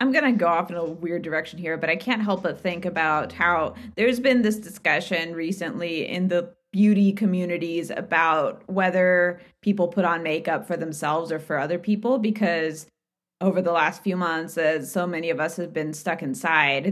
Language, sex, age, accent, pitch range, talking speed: English, female, 20-39, American, 165-210 Hz, 190 wpm